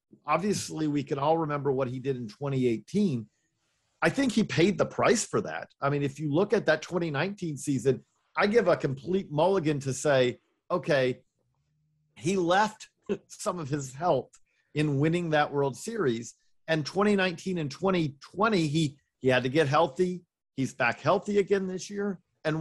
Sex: male